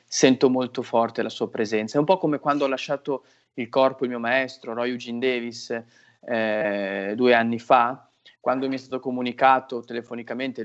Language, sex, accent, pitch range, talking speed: Italian, male, native, 120-145 Hz, 175 wpm